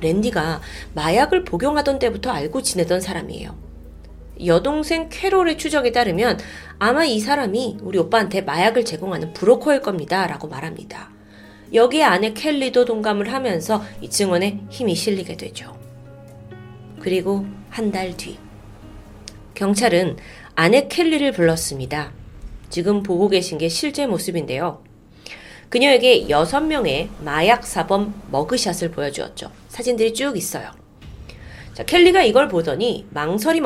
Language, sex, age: Korean, female, 30-49